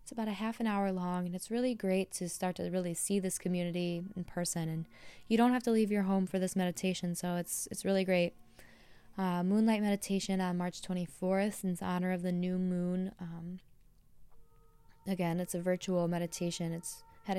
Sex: female